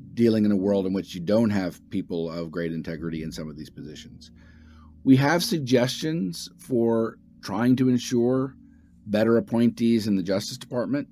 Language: English